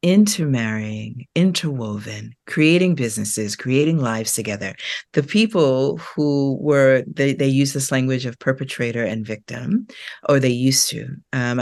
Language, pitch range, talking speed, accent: English, 125-165 Hz, 130 wpm, American